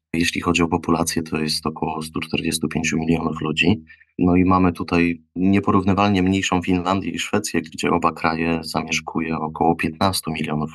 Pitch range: 80-95 Hz